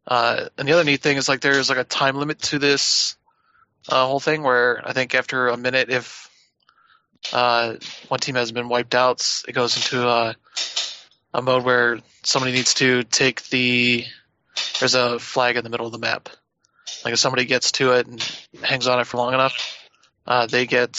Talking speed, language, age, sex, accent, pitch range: 195 wpm, English, 20-39, male, American, 120-130 Hz